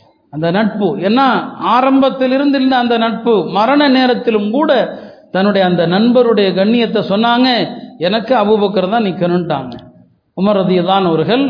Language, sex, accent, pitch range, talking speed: Tamil, male, native, 190-240 Hz, 110 wpm